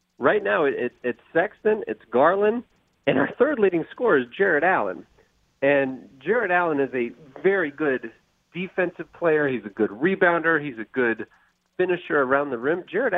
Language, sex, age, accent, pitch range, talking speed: English, male, 40-59, American, 120-190 Hz, 170 wpm